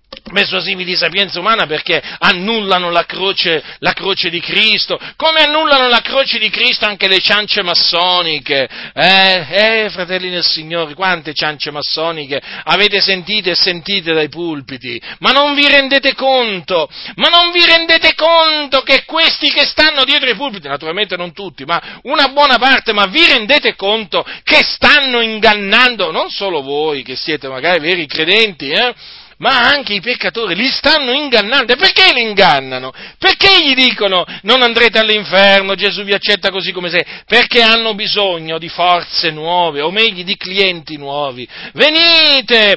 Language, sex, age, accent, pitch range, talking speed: Italian, male, 40-59, native, 180-265 Hz, 155 wpm